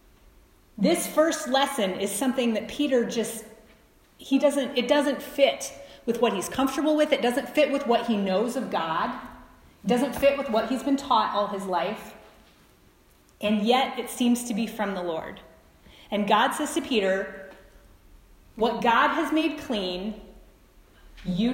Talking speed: 160 wpm